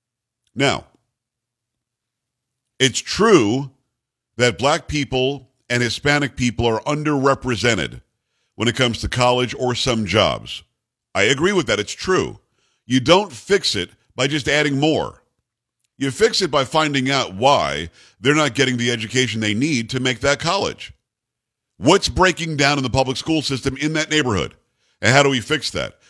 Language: English